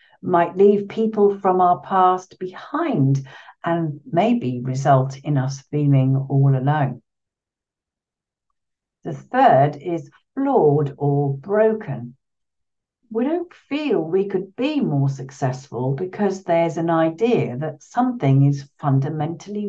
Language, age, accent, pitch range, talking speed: English, 60-79, British, 140-215 Hz, 115 wpm